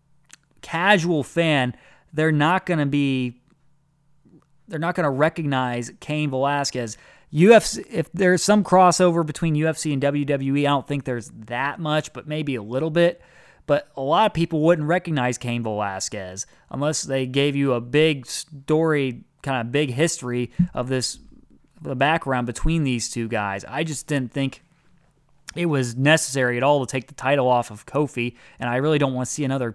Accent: American